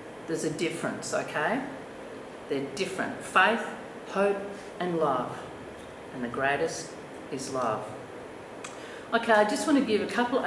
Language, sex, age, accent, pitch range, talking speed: English, female, 50-69, Australian, 185-255 Hz, 130 wpm